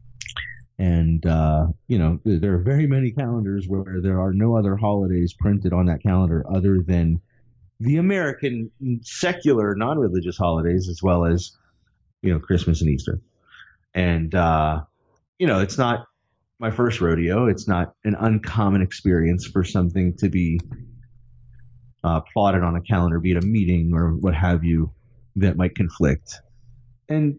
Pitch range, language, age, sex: 85-110 Hz, English, 30-49, male